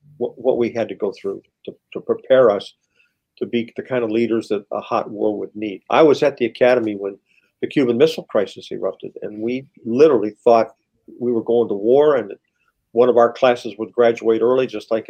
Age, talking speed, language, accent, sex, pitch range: 50-69, 205 wpm, English, American, male, 110-130 Hz